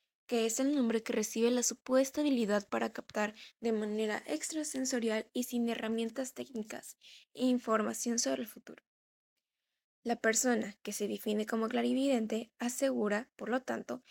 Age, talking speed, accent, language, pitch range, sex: 10-29, 140 wpm, Mexican, Spanish, 215-255 Hz, female